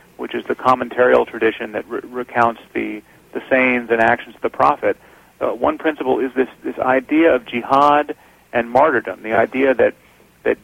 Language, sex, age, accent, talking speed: English, male, 40-59, American, 175 wpm